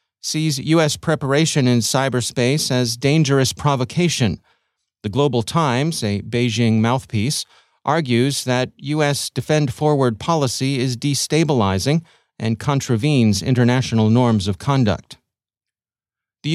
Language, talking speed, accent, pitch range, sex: English, 100 wpm, American, 115-140 Hz, male